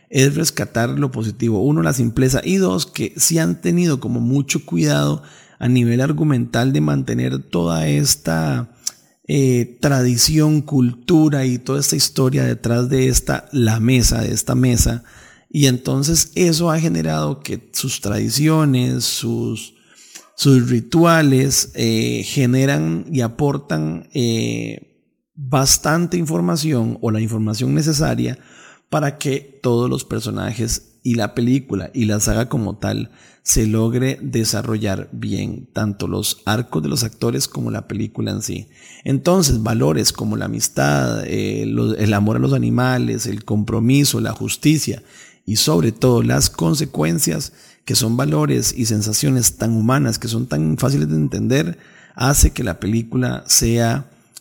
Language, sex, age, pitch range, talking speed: Spanish, male, 30-49, 110-135 Hz, 140 wpm